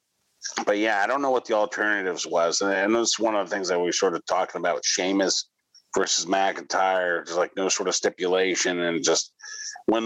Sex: male